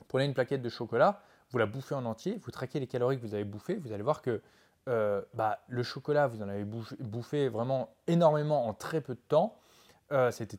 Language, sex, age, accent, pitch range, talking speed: French, male, 20-39, French, 110-145 Hz, 215 wpm